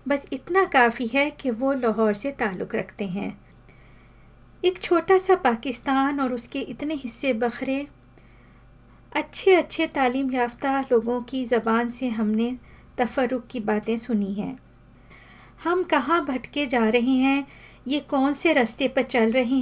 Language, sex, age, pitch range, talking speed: Hindi, female, 40-59, 235-280 Hz, 145 wpm